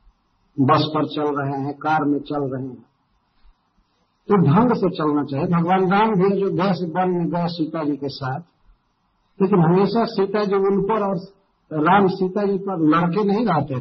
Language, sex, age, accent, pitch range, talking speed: Hindi, male, 50-69, native, 150-200 Hz, 180 wpm